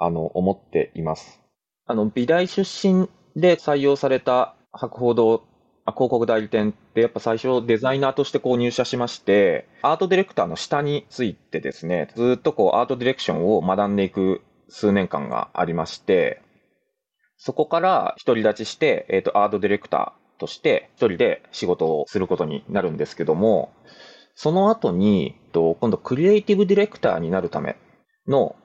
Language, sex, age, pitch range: Japanese, male, 20-39, 110-185 Hz